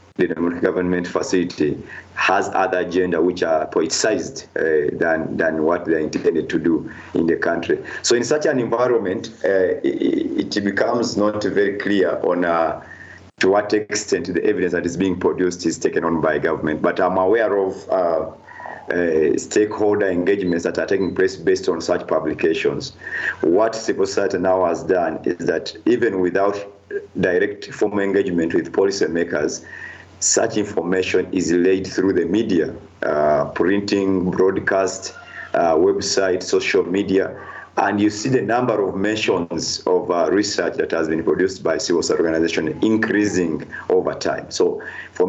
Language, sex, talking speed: English, male, 155 wpm